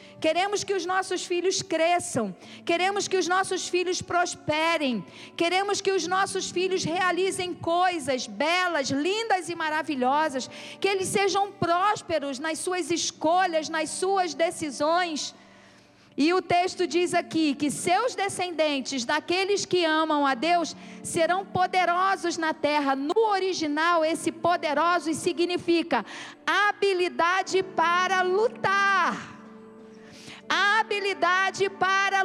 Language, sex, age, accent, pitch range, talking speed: Portuguese, female, 40-59, Brazilian, 320-390 Hz, 115 wpm